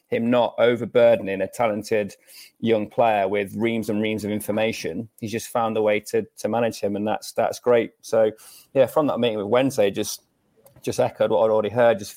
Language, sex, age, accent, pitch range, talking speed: English, male, 30-49, British, 110-125 Hz, 200 wpm